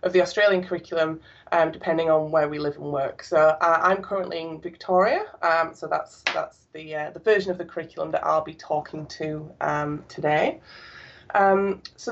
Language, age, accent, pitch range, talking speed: English, 20-39, British, 160-190 Hz, 190 wpm